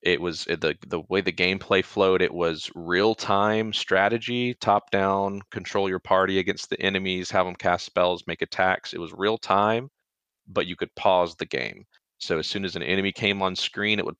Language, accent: English, American